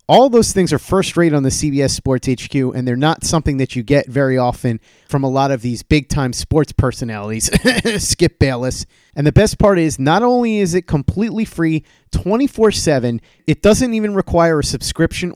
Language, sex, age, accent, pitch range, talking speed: English, male, 30-49, American, 130-195 Hz, 190 wpm